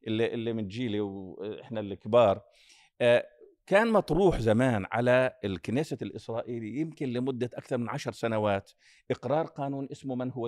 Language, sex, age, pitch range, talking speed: Arabic, male, 50-69, 125-170 Hz, 125 wpm